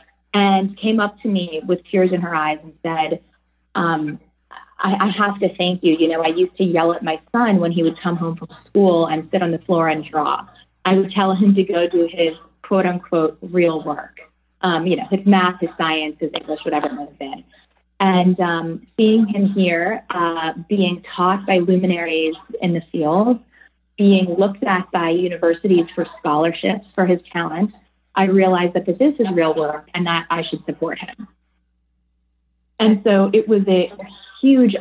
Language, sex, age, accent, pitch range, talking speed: English, female, 20-39, American, 165-195 Hz, 190 wpm